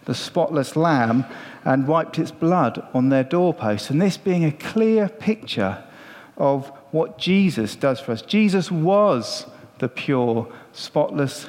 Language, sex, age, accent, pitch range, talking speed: English, male, 40-59, British, 140-185 Hz, 140 wpm